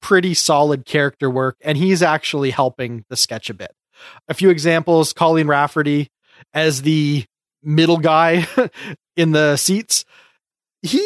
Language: English